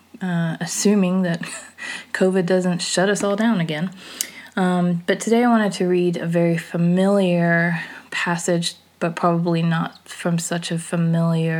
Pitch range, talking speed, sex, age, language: 165-195 Hz, 145 wpm, female, 20-39, English